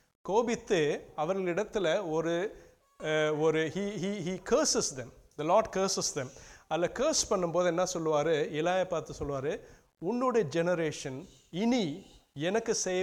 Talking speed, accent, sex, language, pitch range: 75 wpm, Indian, male, English, 160-210 Hz